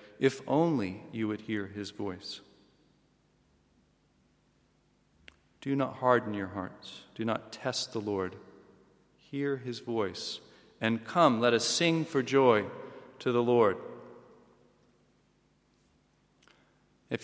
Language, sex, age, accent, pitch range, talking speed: English, male, 40-59, American, 105-130 Hz, 110 wpm